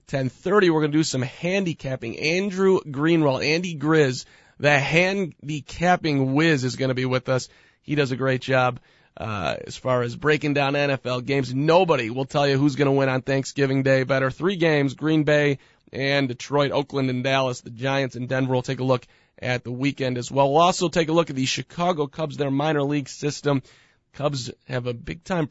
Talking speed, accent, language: 200 wpm, American, English